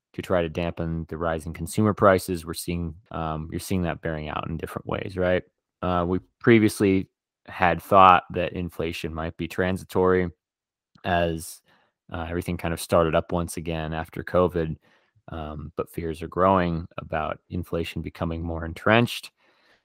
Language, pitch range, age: English, 80-90 Hz, 20-39